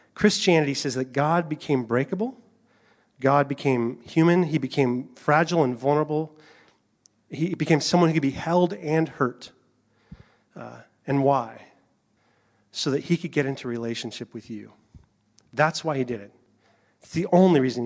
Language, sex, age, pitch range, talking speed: English, male, 30-49, 120-155 Hz, 150 wpm